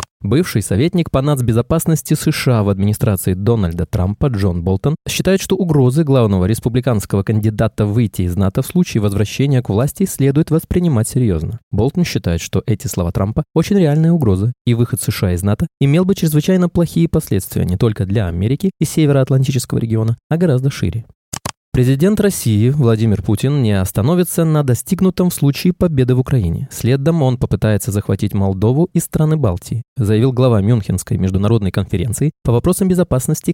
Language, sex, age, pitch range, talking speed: Russian, male, 20-39, 105-160 Hz, 150 wpm